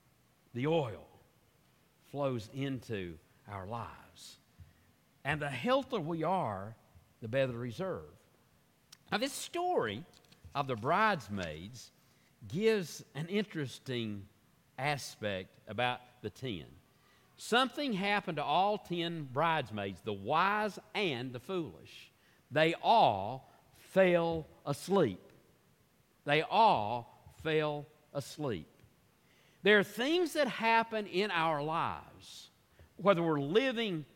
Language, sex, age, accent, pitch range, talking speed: English, male, 50-69, American, 125-185 Hz, 100 wpm